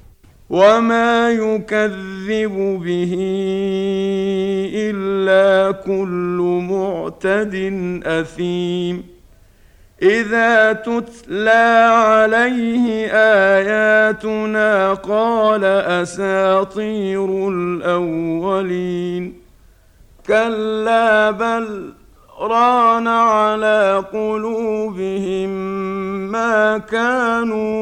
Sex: male